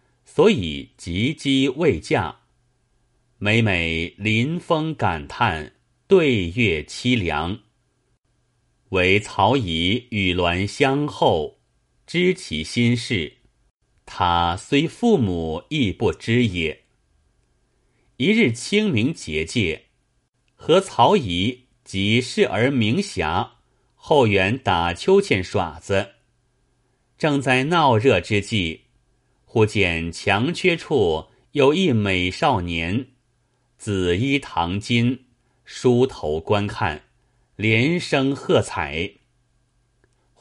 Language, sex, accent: Chinese, male, native